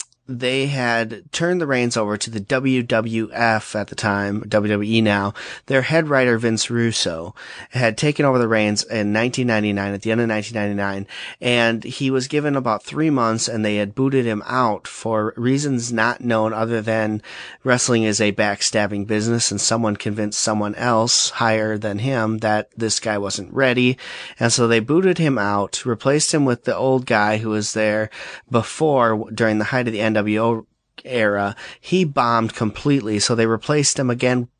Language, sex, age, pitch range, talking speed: English, male, 30-49, 105-125 Hz, 170 wpm